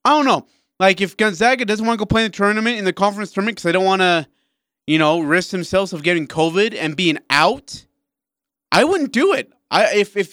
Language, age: English, 20-39